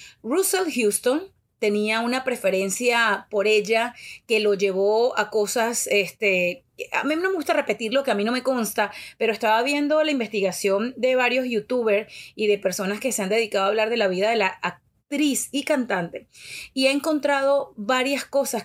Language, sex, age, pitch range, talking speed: Spanish, female, 30-49, 190-245 Hz, 180 wpm